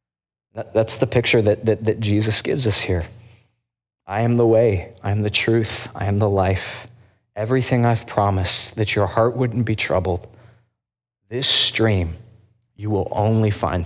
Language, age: English, 20-39